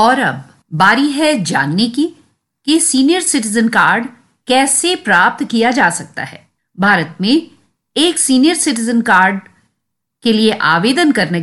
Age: 50-69